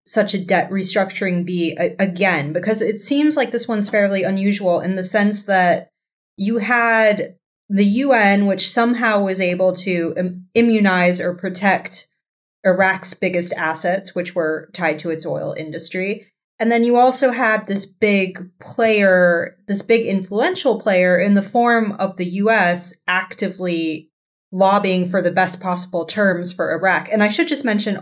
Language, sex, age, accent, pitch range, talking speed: English, female, 20-39, American, 180-215 Hz, 155 wpm